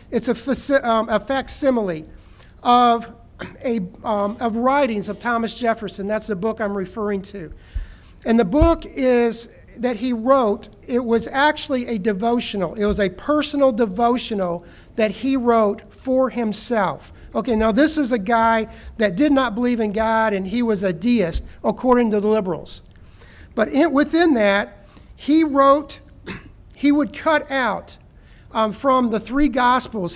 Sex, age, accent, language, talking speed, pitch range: male, 50-69, American, English, 155 wpm, 210-260 Hz